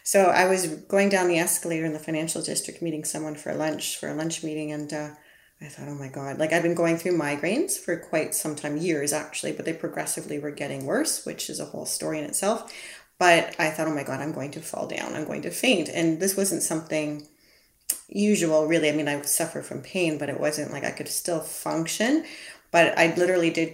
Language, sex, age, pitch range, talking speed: English, female, 30-49, 155-180 Hz, 235 wpm